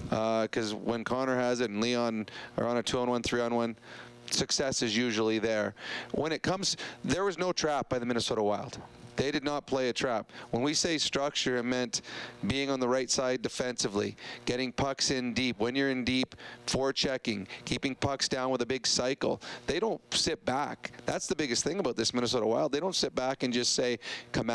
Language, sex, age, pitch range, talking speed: English, male, 30-49, 120-135 Hz, 200 wpm